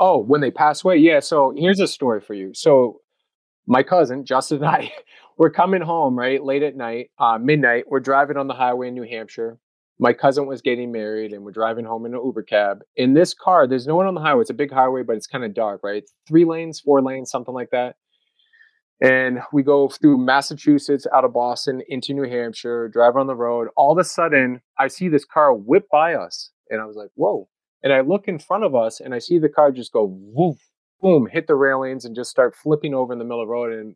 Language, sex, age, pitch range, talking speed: English, male, 30-49, 120-165 Hz, 240 wpm